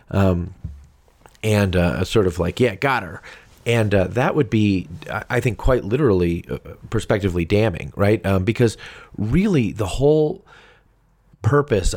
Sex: male